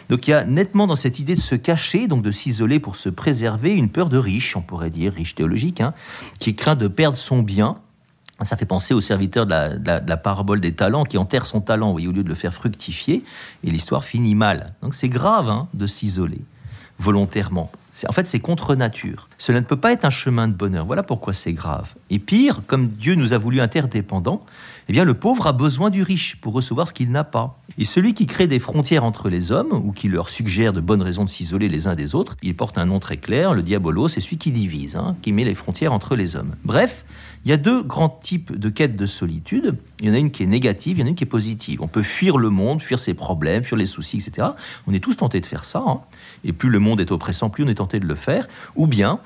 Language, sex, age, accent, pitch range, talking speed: French, male, 50-69, French, 100-150 Hz, 260 wpm